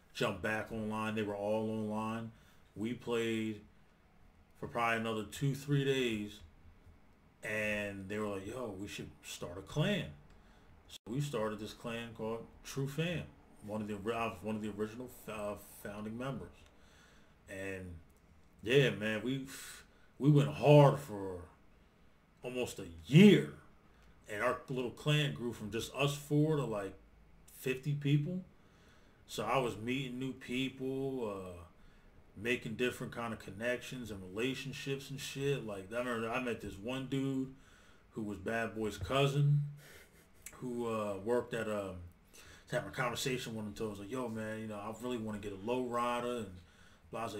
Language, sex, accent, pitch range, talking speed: English, male, American, 100-130 Hz, 160 wpm